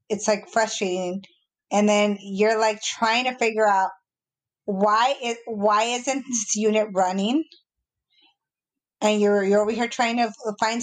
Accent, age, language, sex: American, 20-39, English, female